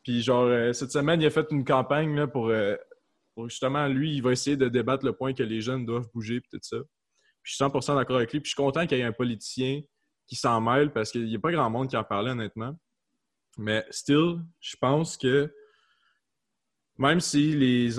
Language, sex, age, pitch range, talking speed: French, male, 20-39, 115-135 Hz, 225 wpm